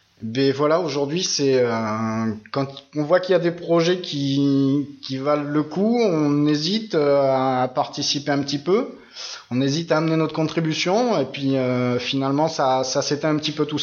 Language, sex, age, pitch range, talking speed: French, male, 20-39, 140-170 Hz, 180 wpm